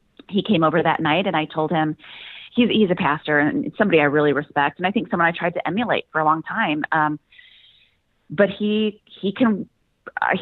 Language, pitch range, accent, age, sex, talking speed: English, 145-190 Hz, American, 30-49, female, 205 wpm